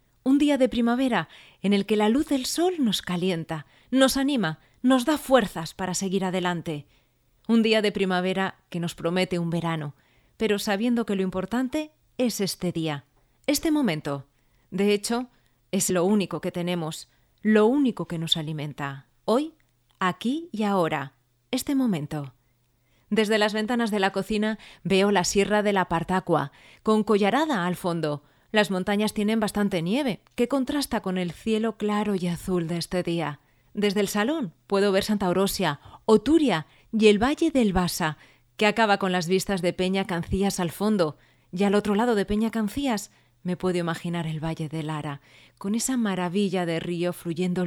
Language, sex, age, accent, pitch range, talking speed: Spanish, female, 30-49, Spanish, 160-215 Hz, 165 wpm